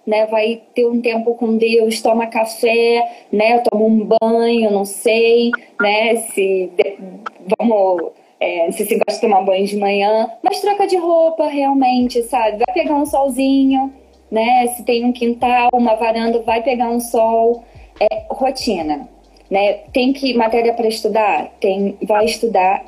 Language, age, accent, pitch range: Portuguese, 20-39, Brazilian, 220-265 Hz